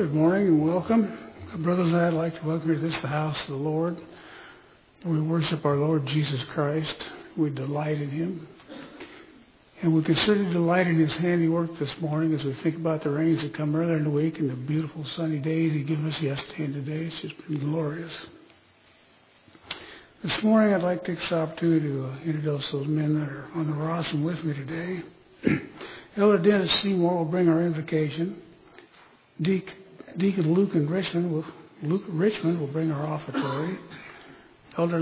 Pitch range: 150-170 Hz